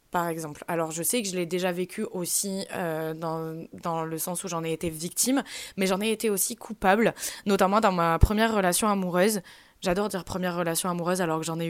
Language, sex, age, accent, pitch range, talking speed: French, female, 20-39, French, 175-225 Hz, 215 wpm